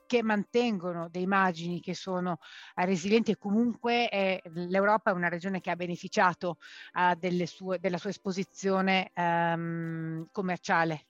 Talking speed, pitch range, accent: 125 wpm, 180-210 Hz, native